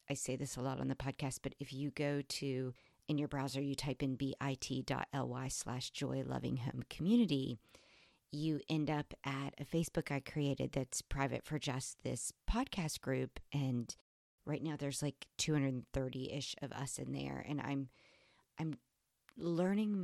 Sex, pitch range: female, 130-150 Hz